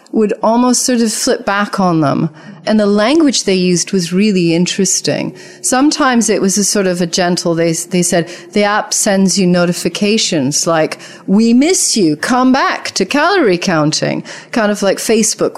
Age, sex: 40-59, female